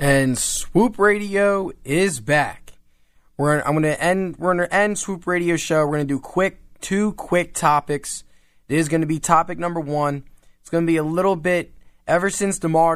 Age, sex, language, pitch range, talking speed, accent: 20-39, male, English, 120-150 Hz, 175 wpm, American